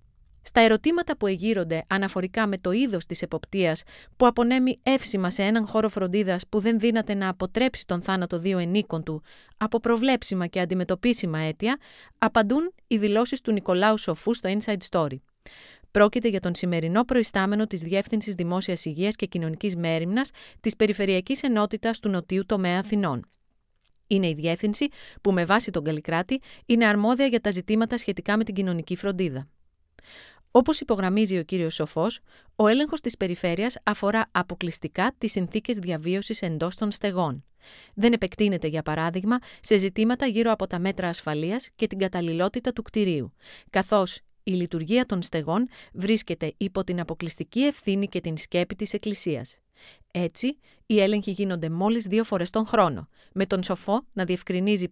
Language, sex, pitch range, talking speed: Greek, female, 175-225 Hz, 155 wpm